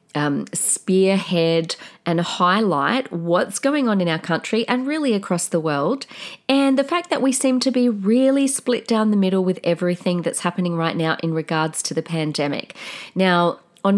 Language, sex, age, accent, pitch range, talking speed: English, female, 40-59, Australian, 160-215 Hz, 170 wpm